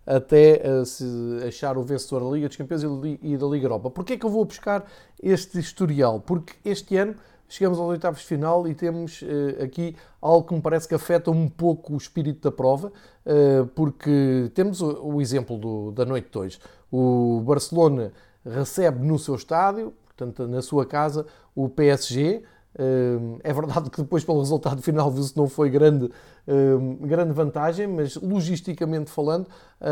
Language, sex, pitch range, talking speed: Portuguese, male, 135-170 Hz, 160 wpm